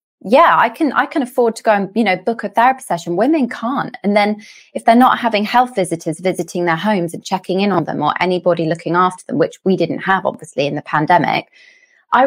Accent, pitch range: British, 175-235 Hz